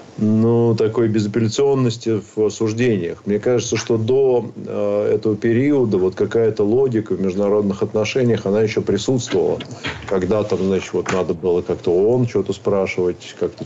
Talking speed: 135 wpm